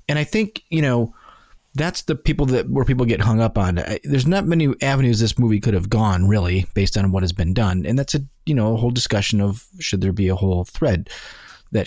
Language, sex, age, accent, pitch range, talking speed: English, male, 30-49, American, 100-135 Hz, 240 wpm